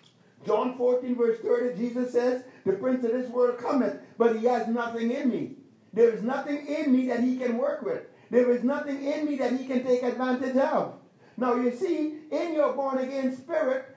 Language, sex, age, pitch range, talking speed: English, male, 50-69, 230-285 Hz, 200 wpm